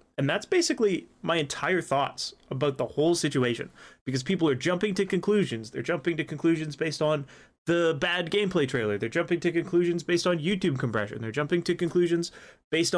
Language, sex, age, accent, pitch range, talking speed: English, male, 30-49, American, 135-175 Hz, 180 wpm